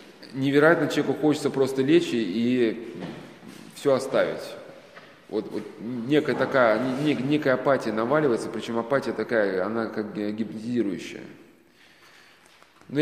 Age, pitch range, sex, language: 20-39, 120-150 Hz, male, Russian